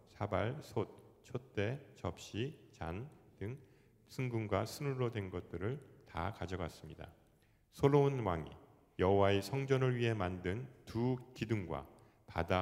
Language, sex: Korean, male